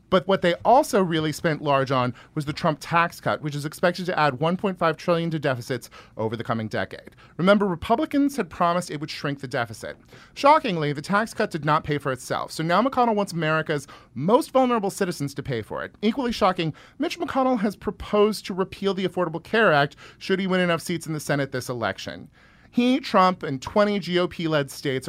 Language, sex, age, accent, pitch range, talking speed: English, male, 40-59, American, 135-190 Hz, 200 wpm